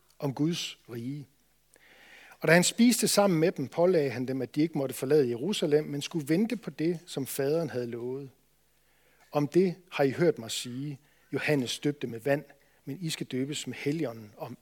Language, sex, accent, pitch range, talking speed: Danish, male, native, 135-170 Hz, 190 wpm